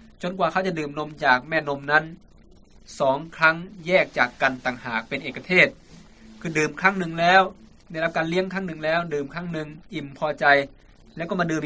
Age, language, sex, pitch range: 20-39, Thai, male, 135-170 Hz